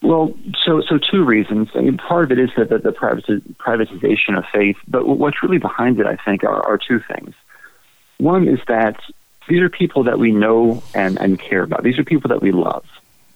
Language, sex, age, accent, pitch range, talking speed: English, male, 40-59, American, 100-125 Hz, 210 wpm